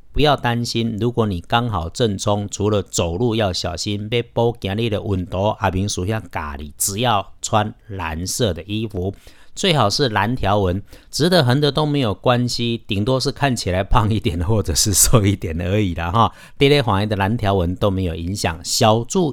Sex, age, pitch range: male, 50-69, 95-125 Hz